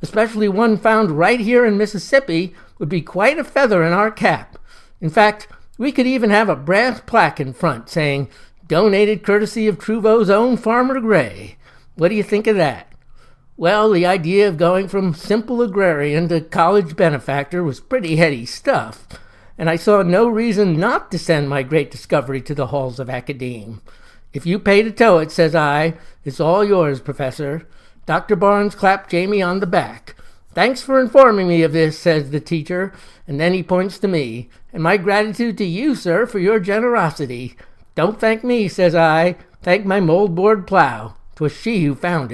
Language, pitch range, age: English, 160-210 Hz, 60-79